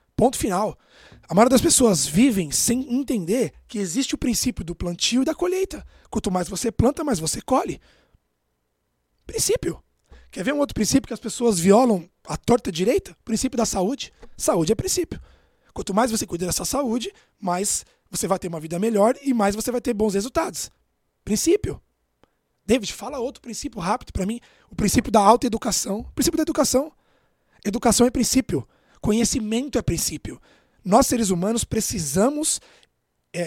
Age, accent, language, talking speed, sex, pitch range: 20-39, Brazilian, Portuguese, 160 wpm, male, 195-260 Hz